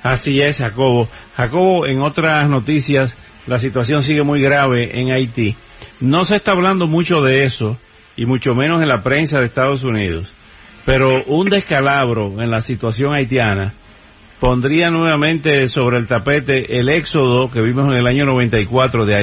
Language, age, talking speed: English, 50-69, 155 wpm